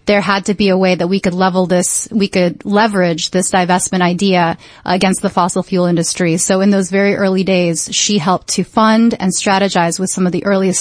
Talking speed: 215 wpm